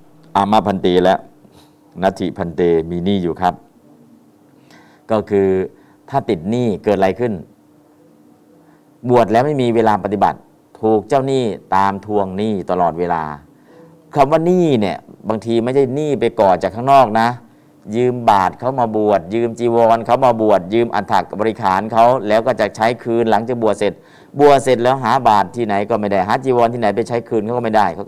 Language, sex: Thai, male